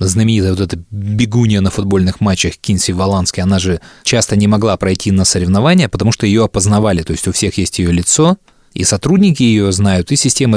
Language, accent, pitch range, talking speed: Russian, native, 95-125 Hz, 185 wpm